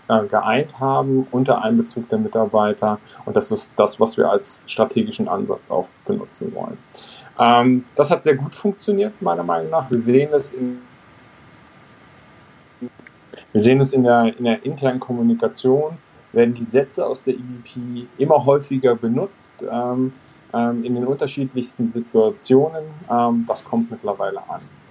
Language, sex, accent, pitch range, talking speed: German, male, German, 120-145 Hz, 135 wpm